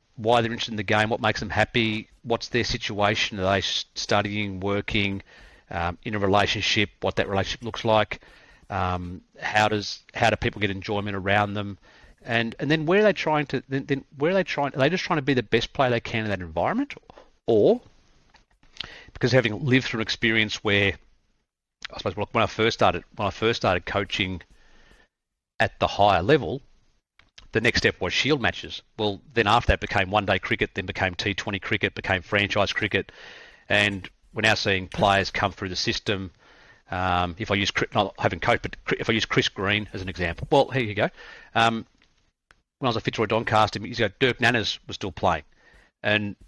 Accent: Australian